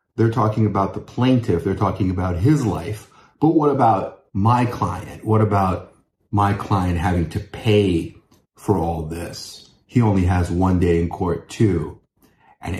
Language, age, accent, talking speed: English, 30-49, American, 160 wpm